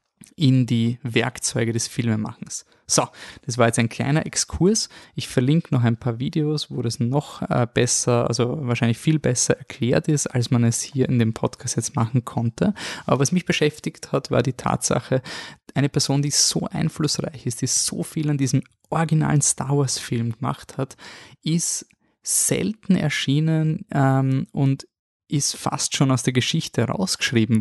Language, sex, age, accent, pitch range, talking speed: German, male, 20-39, German, 120-150 Hz, 160 wpm